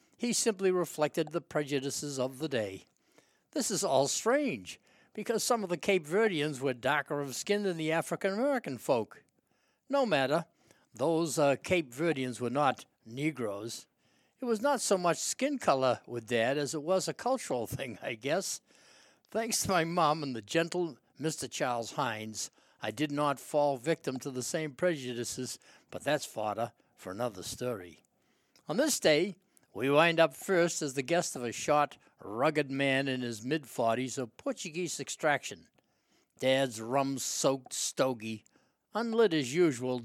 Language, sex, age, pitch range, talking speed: English, male, 60-79, 130-175 Hz, 155 wpm